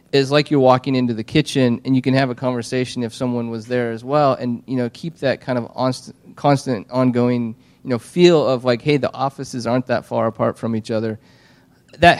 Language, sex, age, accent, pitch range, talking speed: English, male, 30-49, American, 115-135 Hz, 220 wpm